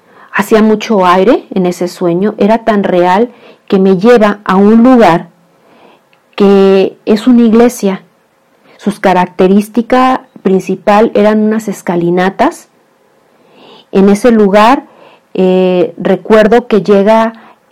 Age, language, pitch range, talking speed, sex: 40-59, Spanish, 190-225 Hz, 110 wpm, female